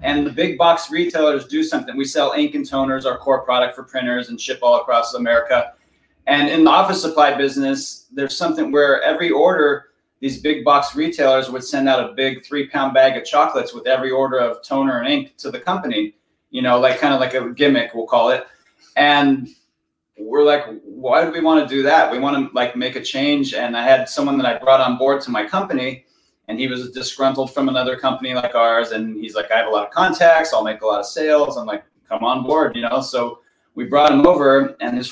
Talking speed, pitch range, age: 230 wpm, 130-160 Hz, 30-49